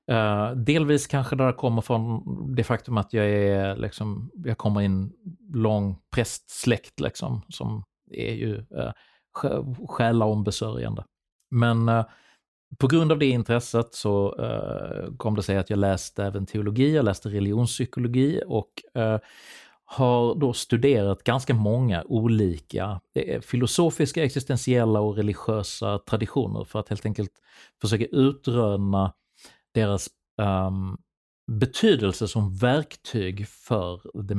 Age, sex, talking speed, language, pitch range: 30-49, male, 125 wpm, English, 100-125 Hz